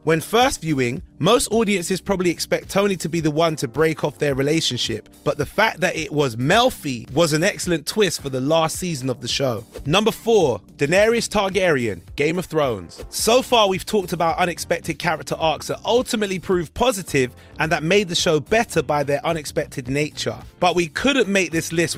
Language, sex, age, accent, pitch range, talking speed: English, male, 30-49, British, 145-195 Hz, 190 wpm